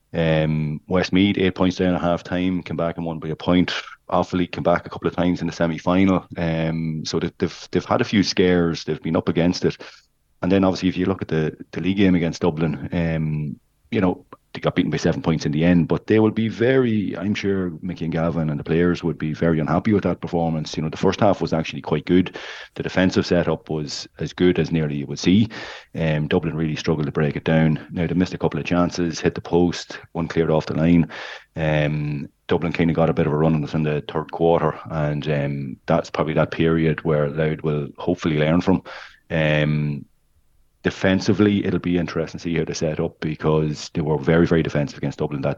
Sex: male